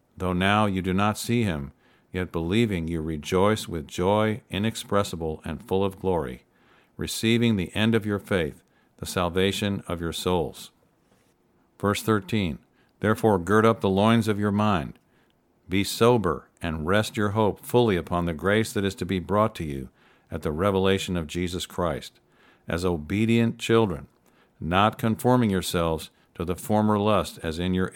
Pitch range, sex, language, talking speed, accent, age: 90-110 Hz, male, English, 160 wpm, American, 50-69